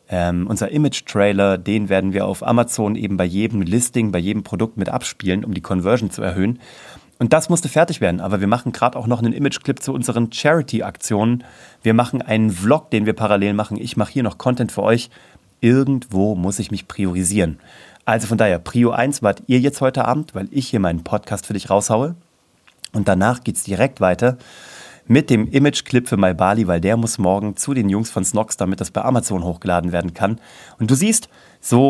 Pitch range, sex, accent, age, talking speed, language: 95-120 Hz, male, German, 30-49, 205 wpm, German